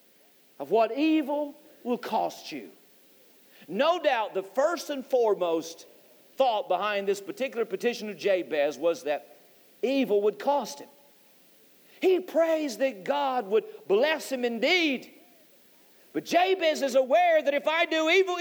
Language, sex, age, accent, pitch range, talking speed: English, male, 50-69, American, 205-310 Hz, 135 wpm